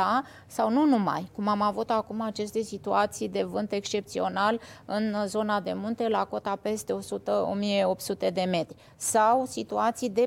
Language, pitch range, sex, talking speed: Romanian, 195-230 Hz, female, 160 wpm